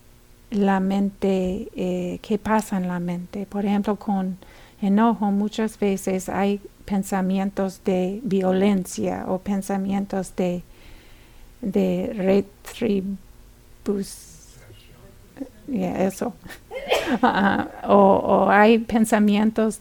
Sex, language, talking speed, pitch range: female, English, 90 wpm, 200-245 Hz